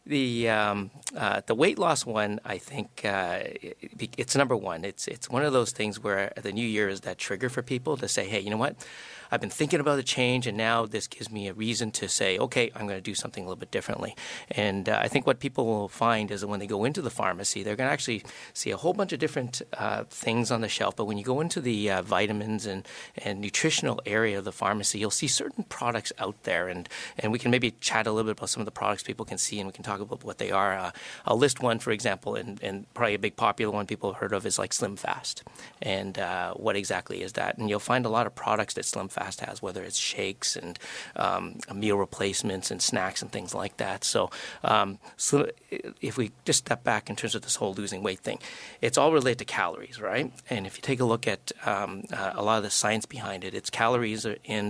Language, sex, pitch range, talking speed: English, male, 105-125 Hz, 250 wpm